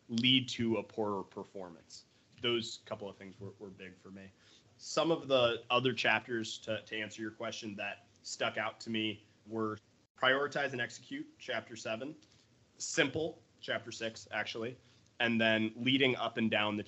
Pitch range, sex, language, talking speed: 105-125 Hz, male, English, 165 wpm